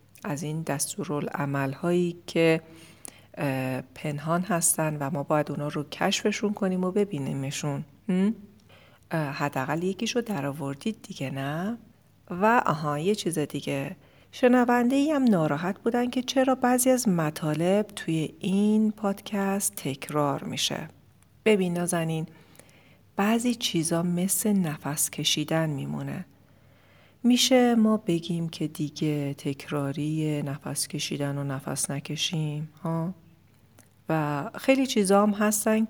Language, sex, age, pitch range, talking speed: Persian, female, 40-59, 145-200 Hz, 110 wpm